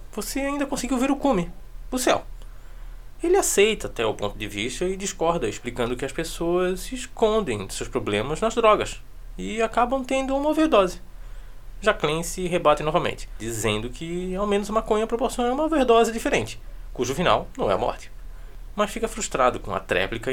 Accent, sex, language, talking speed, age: Brazilian, male, Portuguese, 170 wpm, 20-39